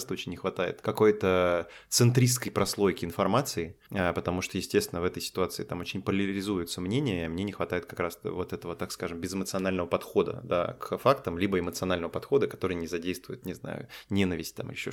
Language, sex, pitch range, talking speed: Russian, male, 90-105 Hz, 170 wpm